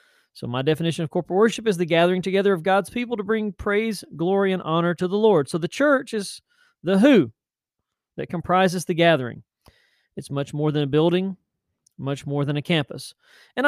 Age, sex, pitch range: 40-59, male, 155-210 Hz